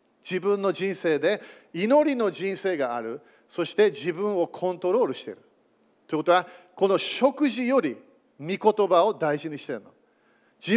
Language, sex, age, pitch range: Japanese, male, 40-59, 180-245 Hz